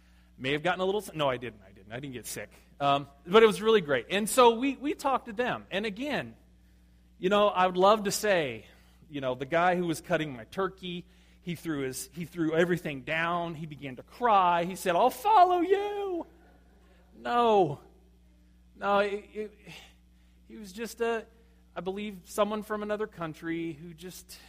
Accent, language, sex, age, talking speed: American, English, male, 30-49, 190 wpm